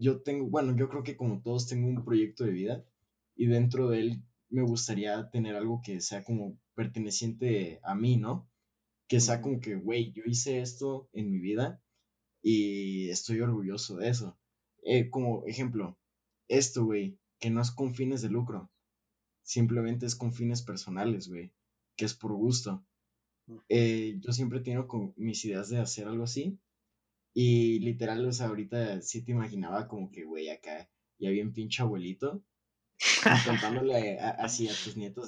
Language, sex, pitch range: Spanish, male, 105-120 Hz